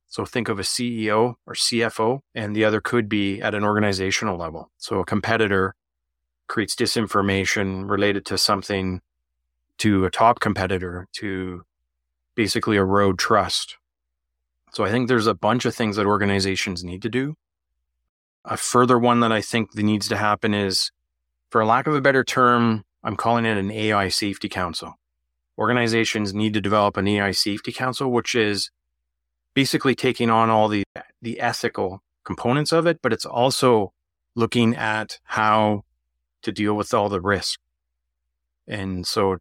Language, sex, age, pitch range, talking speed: English, male, 30-49, 95-115 Hz, 160 wpm